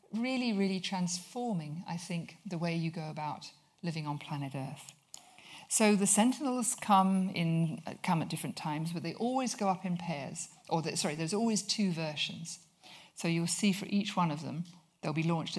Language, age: English, 50-69